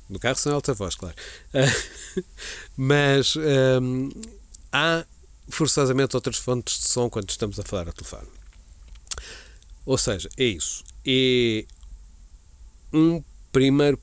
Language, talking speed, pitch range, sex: Portuguese, 115 wpm, 105-140 Hz, male